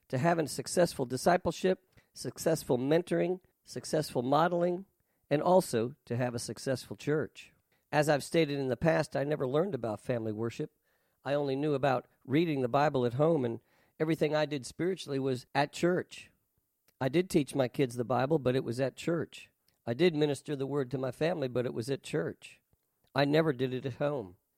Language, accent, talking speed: English, American, 185 wpm